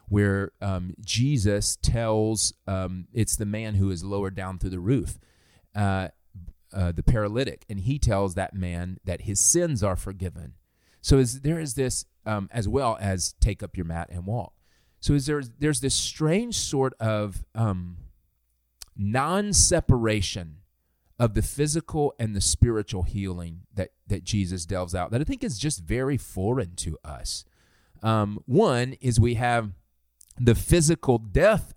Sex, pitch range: male, 95-120 Hz